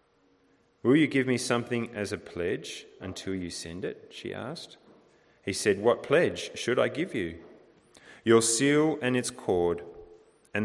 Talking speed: 160 wpm